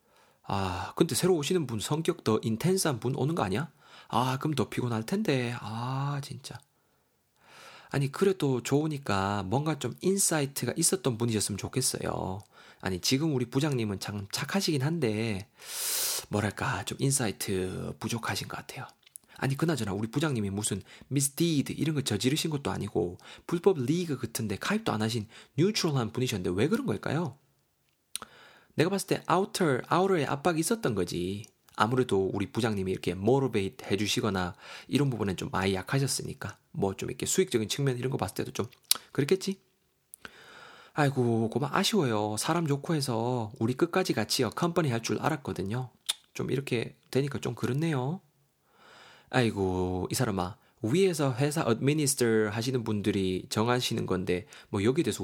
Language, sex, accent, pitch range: Korean, male, native, 105-150 Hz